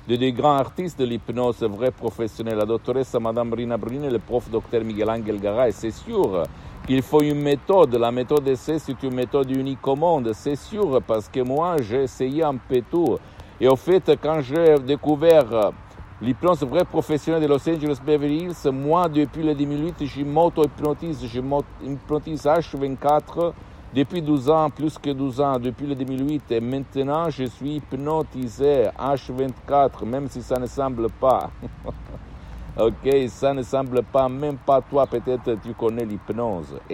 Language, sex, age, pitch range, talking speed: Italian, male, 60-79, 115-145 Hz, 170 wpm